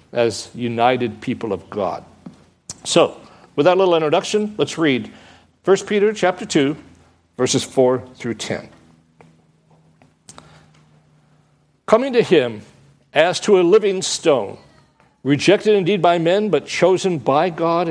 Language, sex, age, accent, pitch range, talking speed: English, male, 60-79, American, 135-200 Hz, 120 wpm